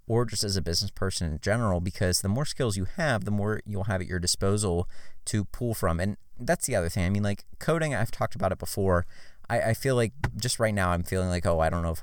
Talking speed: 265 wpm